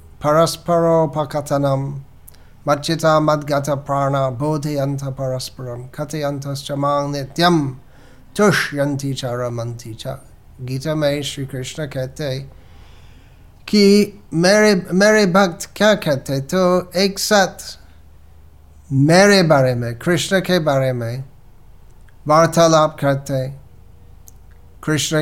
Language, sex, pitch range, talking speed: Hindi, male, 115-170 Hz, 95 wpm